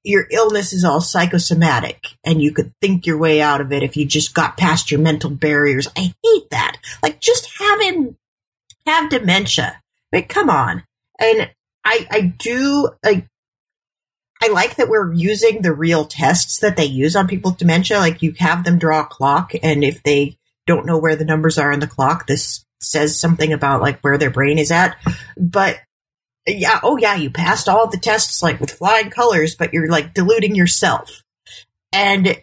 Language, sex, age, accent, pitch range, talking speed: English, female, 30-49, American, 145-195 Hz, 190 wpm